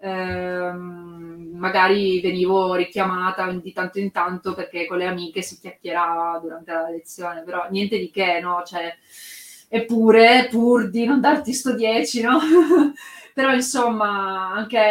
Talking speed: 135 wpm